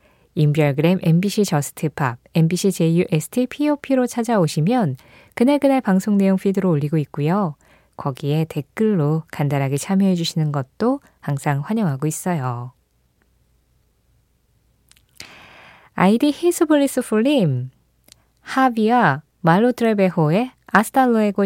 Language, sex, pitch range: Korean, female, 155-235 Hz